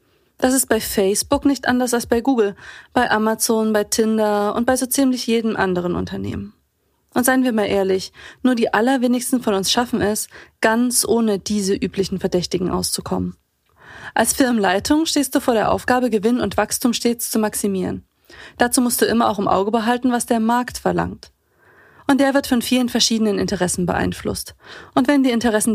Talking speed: 175 wpm